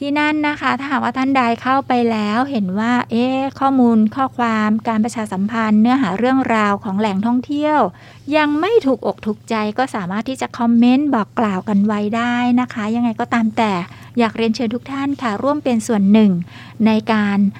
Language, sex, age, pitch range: Thai, female, 60-79, 215-255 Hz